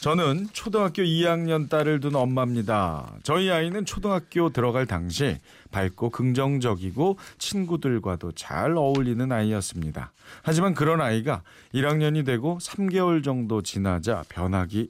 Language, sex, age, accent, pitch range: Korean, male, 40-59, native, 110-155 Hz